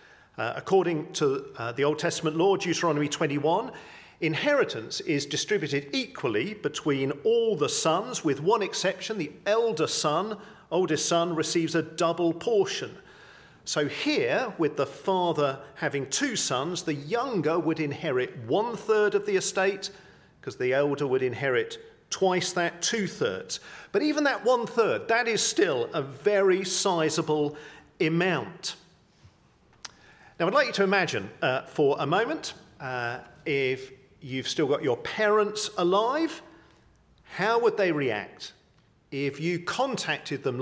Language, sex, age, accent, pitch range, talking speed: English, male, 40-59, British, 145-220 Hz, 135 wpm